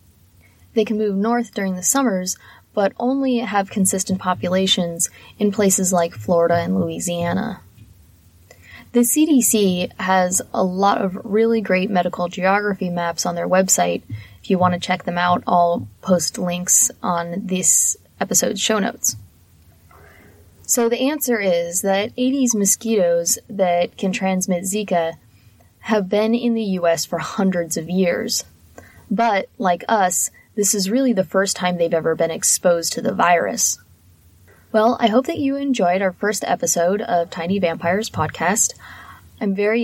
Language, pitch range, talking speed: English, 165-210 Hz, 150 wpm